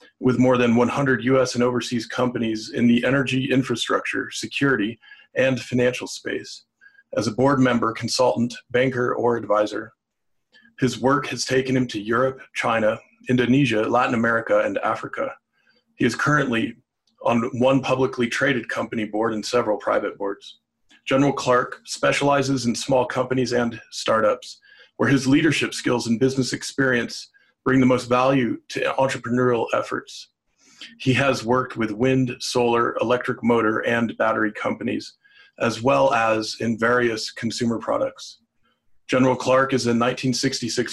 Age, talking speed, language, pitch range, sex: 40-59, 140 wpm, English, 115-130 Hz, male